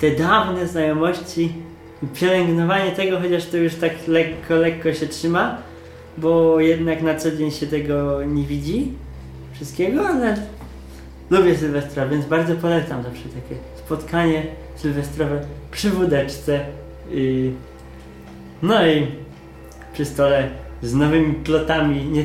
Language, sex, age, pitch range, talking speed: Polish, male, 20-39, 115-160 Hz, 120 wpm